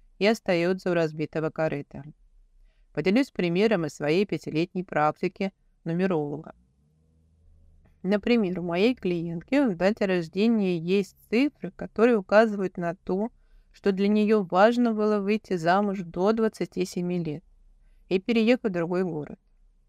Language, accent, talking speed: Russian, native, 120 wpm